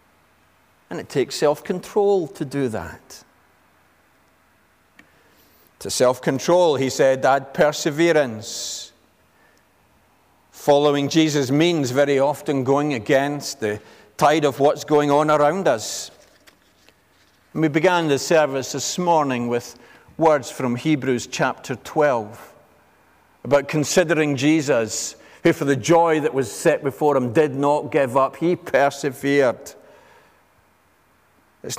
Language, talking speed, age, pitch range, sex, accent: English, 115 wpm, 50-69, 125-155 Hz, male, British